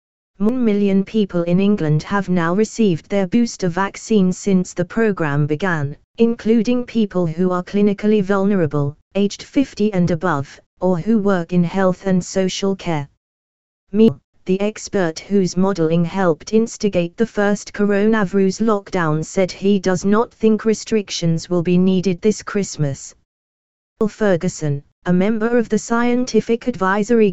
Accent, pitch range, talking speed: British, 170-210 Hz, 140 wpm